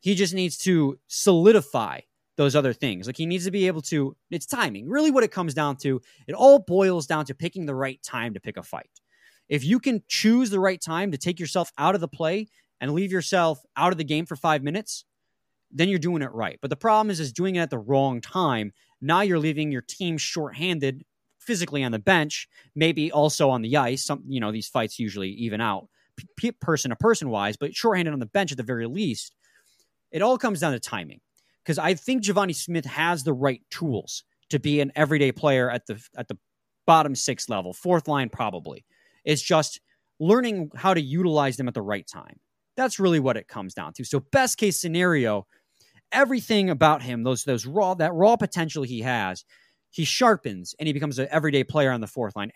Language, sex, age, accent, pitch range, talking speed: English, male, 20-39, American, 130-185 Hz, 215 wpm